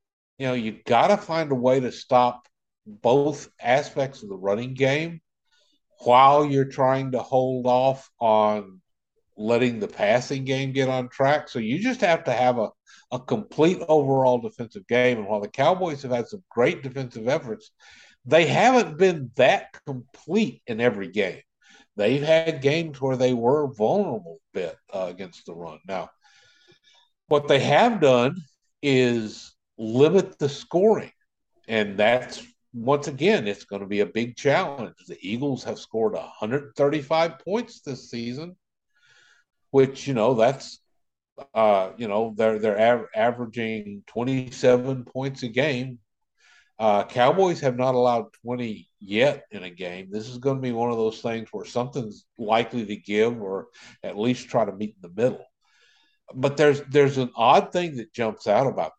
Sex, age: male, 60-79